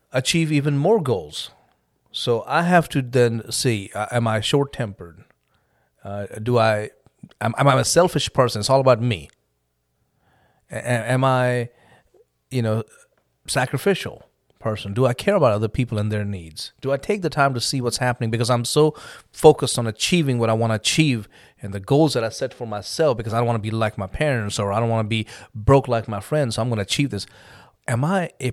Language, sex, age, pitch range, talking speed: English, male, 30-49, 110-140 Hz, 220 wpm